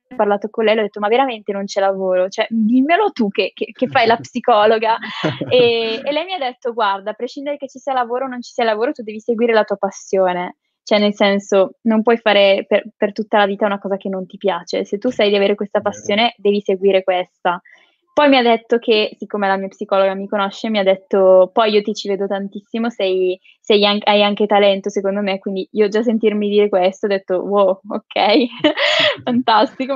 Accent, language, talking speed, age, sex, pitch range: native, Italian, 220 wpm, 20-39, female, 200-235 Hz